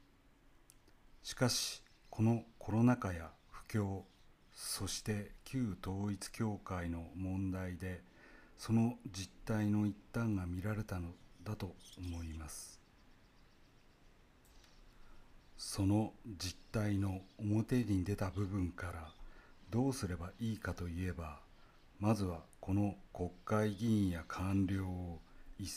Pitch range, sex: 90-110 Hz, male